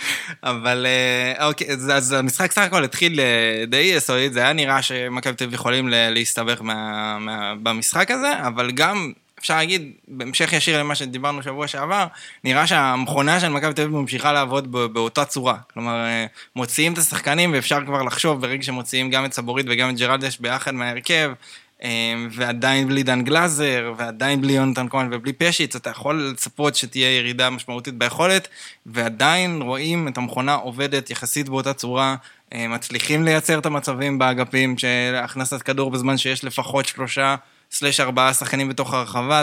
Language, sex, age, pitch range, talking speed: Hebrew, male, 20-39, 125-145 Hz, 150 wpm